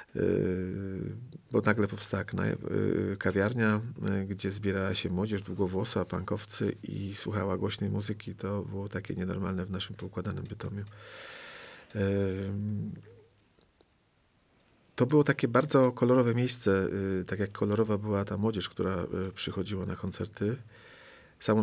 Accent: native